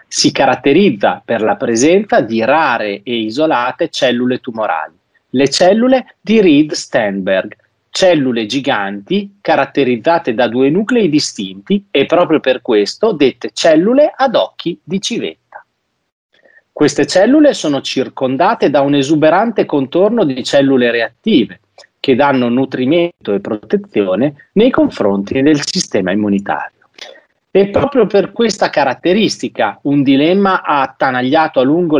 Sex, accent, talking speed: male, native, 120 wpm